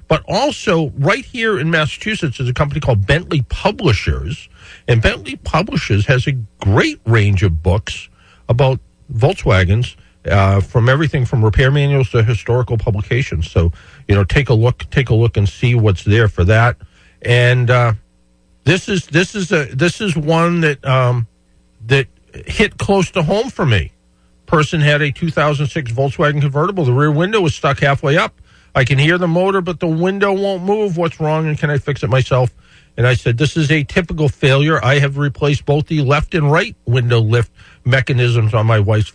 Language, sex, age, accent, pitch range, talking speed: English, male, 50-69, American, 115-155 Hz, 180 wpm